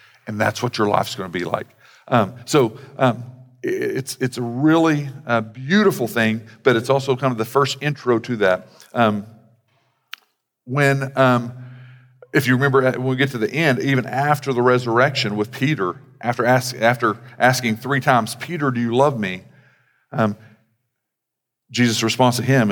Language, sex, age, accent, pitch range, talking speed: English, male, 50-69, American, 105-130 Hz, 165 wpm